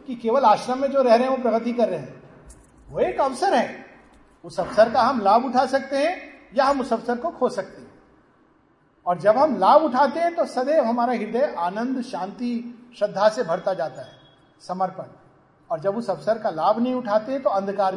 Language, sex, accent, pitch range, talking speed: Hindi, male, native, 180-240 Hz, 205 wpm